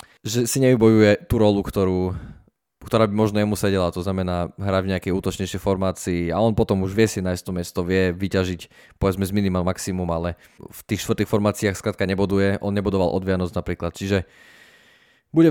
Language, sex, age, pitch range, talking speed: Slovak, male, 20-39, 90-105 Hz, 180 wpm